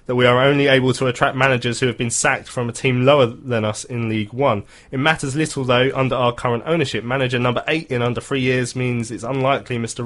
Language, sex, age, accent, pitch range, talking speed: English, male, 20-39, British, 110-135 Hz, 240 wpm